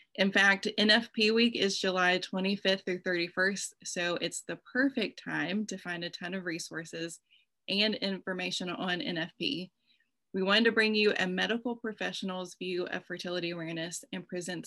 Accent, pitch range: American, 180-205 Hz